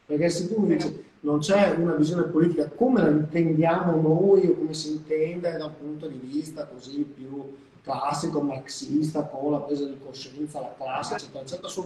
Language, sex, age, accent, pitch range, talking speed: Italian, male, 30-49, native, 140-165 Hz, 170 wpm